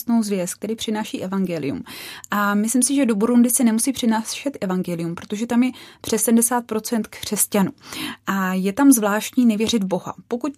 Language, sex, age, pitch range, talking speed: Czech, female, 20-39, 200-240 Hz, 155 wpm